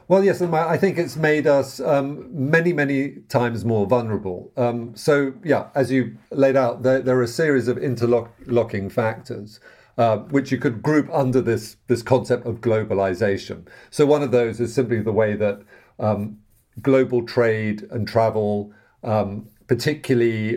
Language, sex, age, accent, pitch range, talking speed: English, male, 50-69, British, 110-135 Hz, 160 wpm